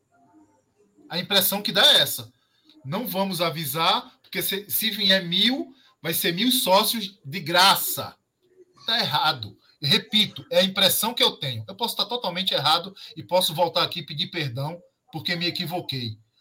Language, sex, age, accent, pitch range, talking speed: Portuguese, male, 20-39, Brazilian, 145-205 Hz, 155 wpm